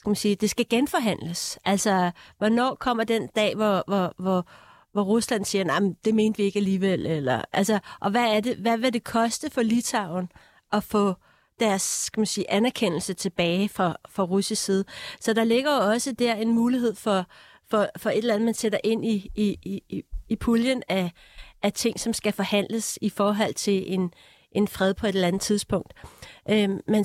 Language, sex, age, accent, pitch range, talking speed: Danish, female, 30-49, native, 200-235 Hz, 195 wpm